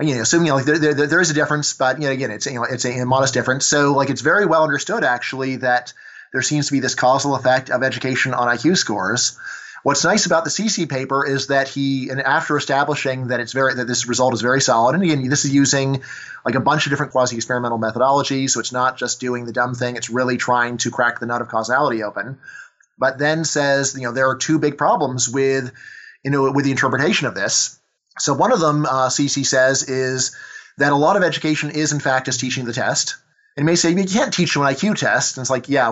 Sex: male